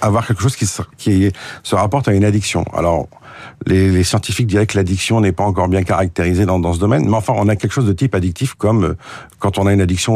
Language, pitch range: French, 95-115 Hz